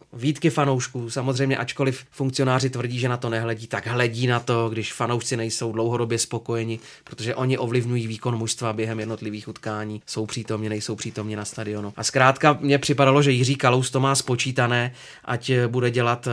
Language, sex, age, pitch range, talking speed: Czech, male, 30-49, 110-130 Hz, 170 wpm